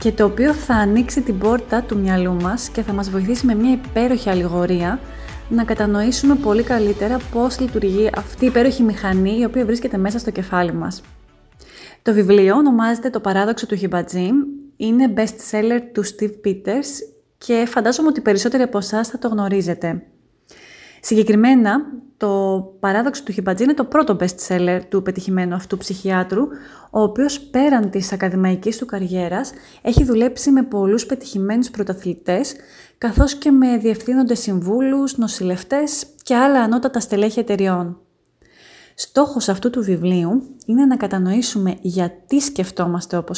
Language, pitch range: Greek, 190-250 Hz